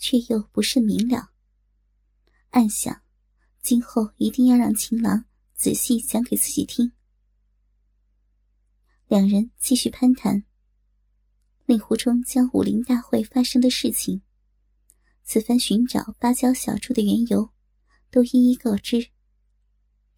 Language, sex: Chinese, male